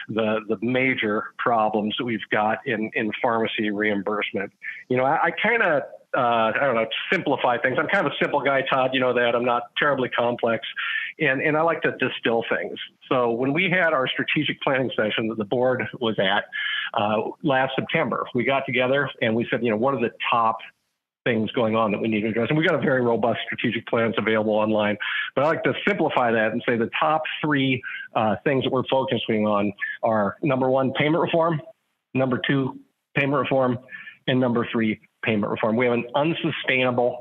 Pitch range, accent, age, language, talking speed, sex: 115-135 Hz, American, 50-69, English, 200 wpm, male